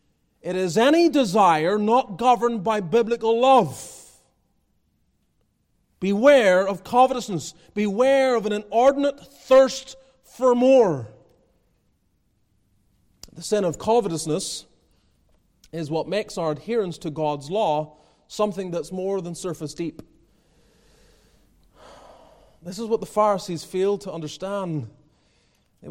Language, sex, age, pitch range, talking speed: English, male, 30-49, 160-220 Hz, 105 wpm